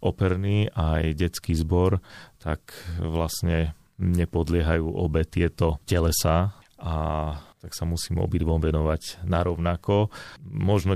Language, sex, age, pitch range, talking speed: Slovak, male, 30-49, 85-95 Hz, 100 wpm